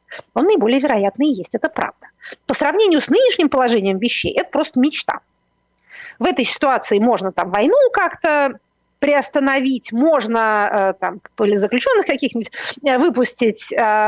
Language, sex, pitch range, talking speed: Russian, female, 225-310 Hz, 125 wpm